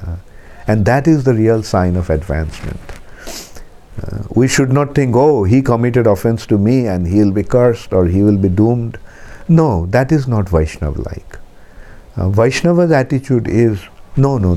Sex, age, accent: male, 50-69, Indian